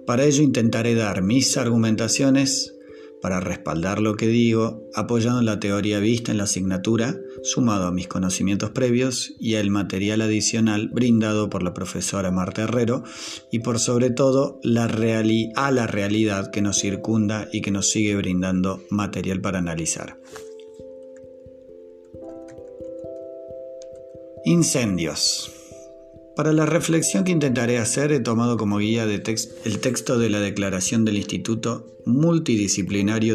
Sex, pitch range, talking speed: male, 95-120 Hz, 130 wpm